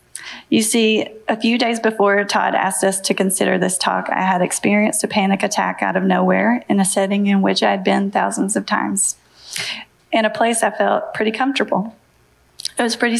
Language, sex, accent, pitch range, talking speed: English, female, American, 190-220 Hz, 190 wpm